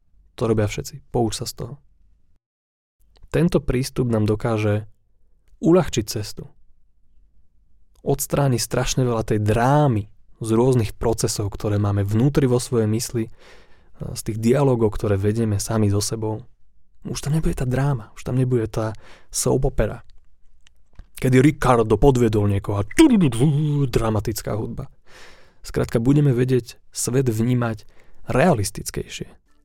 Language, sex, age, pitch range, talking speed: Slovak, male, 20-39, 105-130 Hz, 120 wpm